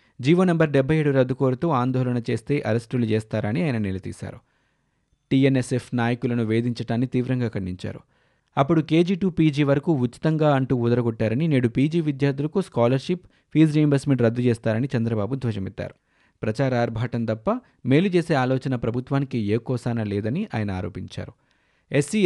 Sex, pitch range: male, 115-140 Hz